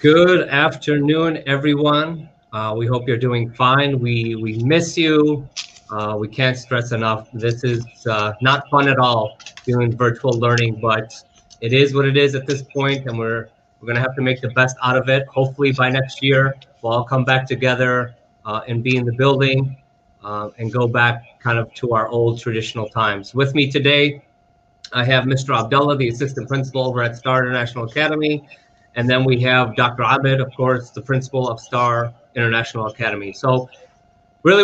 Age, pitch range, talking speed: 30-49, 120-140 Hz, 185 wpm